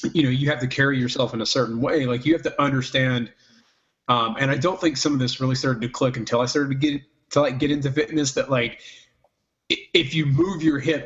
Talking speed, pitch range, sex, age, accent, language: 245 wpm, 125-145 Hz, male, 30-49, American, English